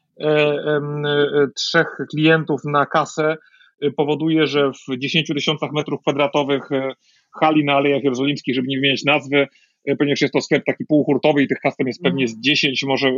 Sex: male